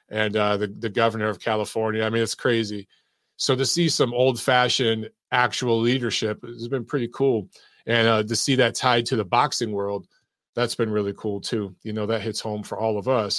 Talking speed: 205 wpm